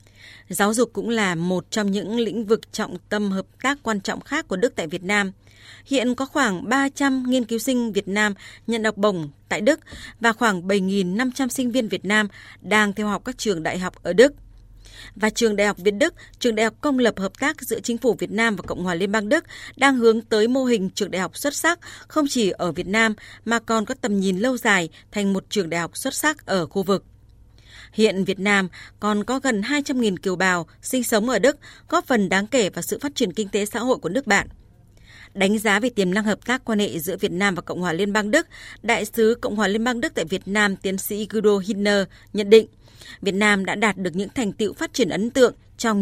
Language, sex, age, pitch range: Vietnamese, female, 20-39, 190-240 Hz